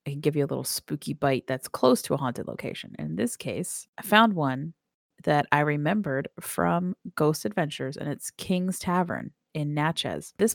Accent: American